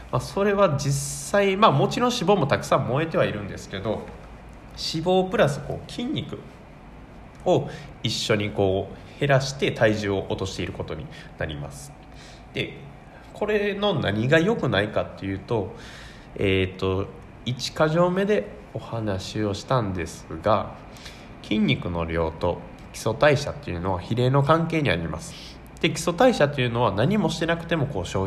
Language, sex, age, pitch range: Japanese, male, 20-39, 95-150 Hz